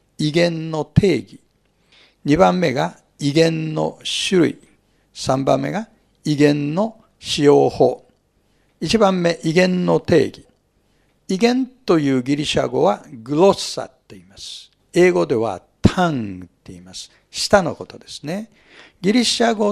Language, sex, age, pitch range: Japanese, male, 60-79, 145-215 Hz